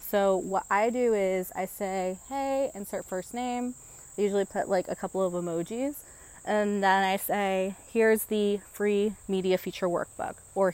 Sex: female